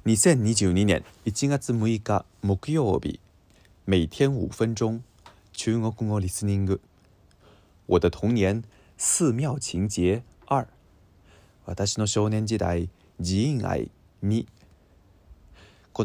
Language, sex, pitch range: Japanese, male, 95-110 Hz